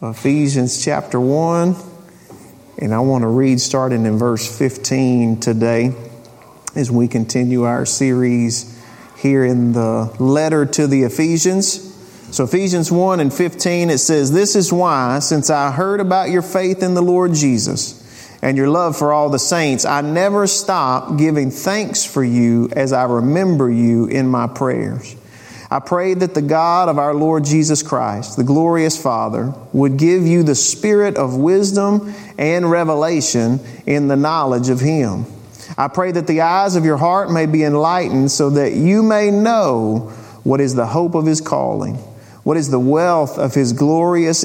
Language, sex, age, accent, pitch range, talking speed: English, male, 40-59, American, 125-175 Hz, 165 wpm